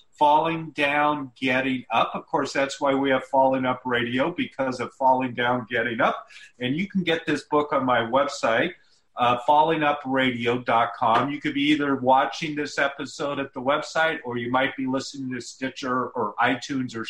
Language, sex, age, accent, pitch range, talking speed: English, male, 40-59, American, 130-150 Hz, 175 wpm